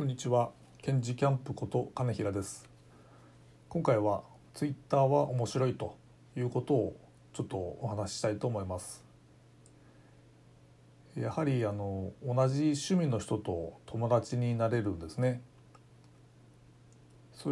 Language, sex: Japanese, male